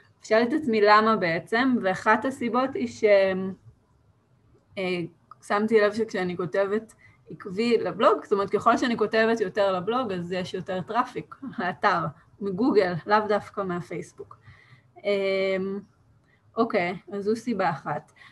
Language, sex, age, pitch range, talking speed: Hebrew, female, 20-39, 180-225 Hz, 130 wpm